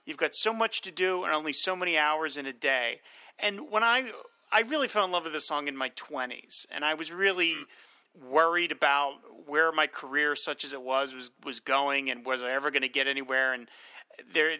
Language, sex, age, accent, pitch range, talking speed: English, male, 40-59, American, 150-220 Hz, 225 wpm